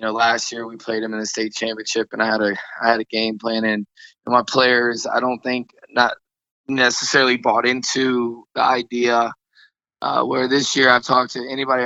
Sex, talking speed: male, 200 wpm